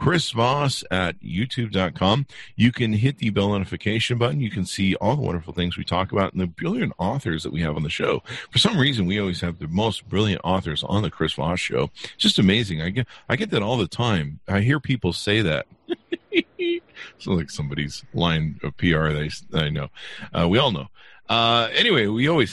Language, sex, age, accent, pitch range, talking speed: English, male, 40-59, American, 90-120 Hz, 210 wpm